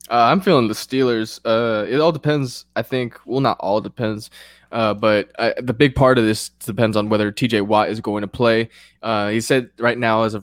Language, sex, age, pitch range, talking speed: English, male, 20-39, 110-125 Hz, 225 wpm